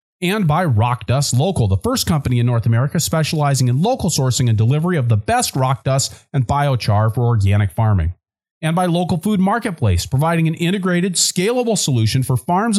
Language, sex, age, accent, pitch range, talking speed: English, male, 40-59, American, 115-185 Hz, 185 wpm